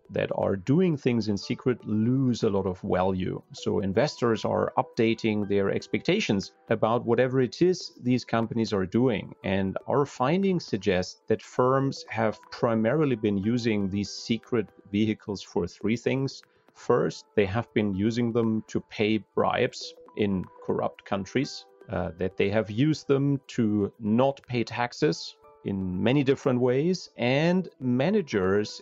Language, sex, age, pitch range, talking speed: Italian, male, 40-59, 100-135 Hz, 145 wpm